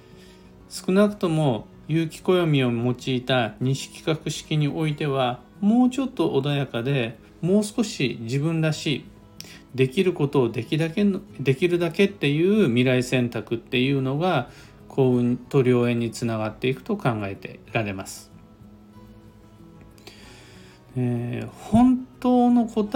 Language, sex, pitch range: Japanese, male, 115-175 Hz